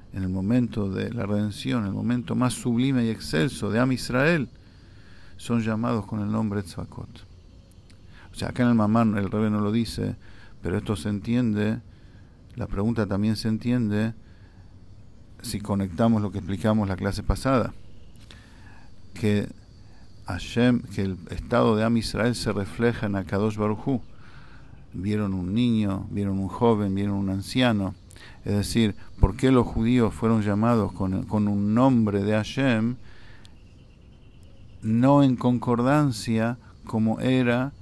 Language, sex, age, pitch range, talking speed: English, male, 50-69, 100-115 Hz, 145 wpm